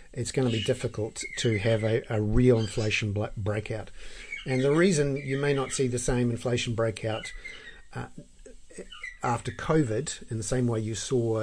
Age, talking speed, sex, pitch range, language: 50-69, 170 wpm, male, 105-125 Hz, English